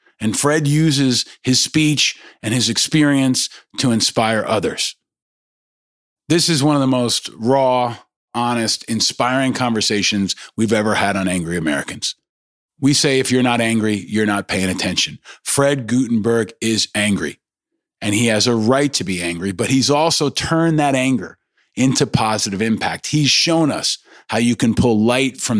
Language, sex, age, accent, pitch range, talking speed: English, male, 40-59, American, 110-135 Hz, 155 wpm